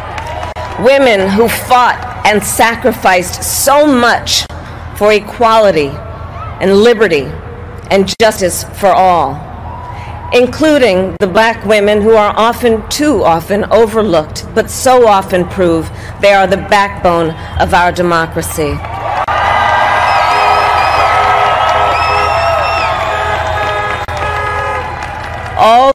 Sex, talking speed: female, 85 wpm